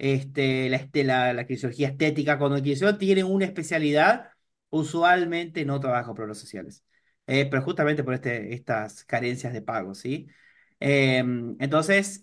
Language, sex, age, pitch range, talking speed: Spanish, male, 30-49, 130-170 Hz, 140 wpm